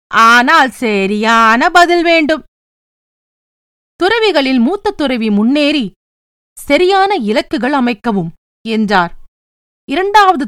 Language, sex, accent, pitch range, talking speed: Tamil, female, native, 215-330 Hz, 75 wpm